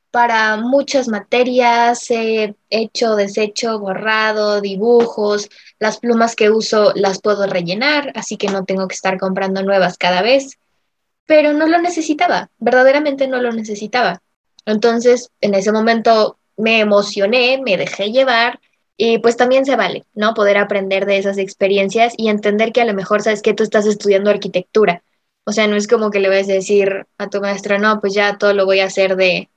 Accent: Mexican